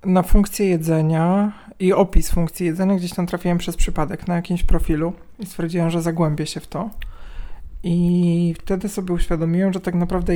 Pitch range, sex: 160-180 Hz, male